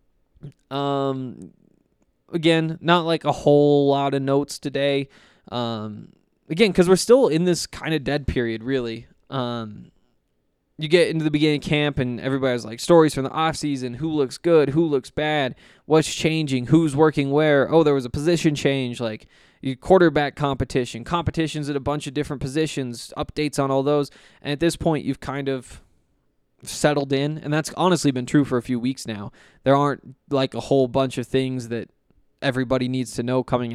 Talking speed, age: 180 wpm, 20-39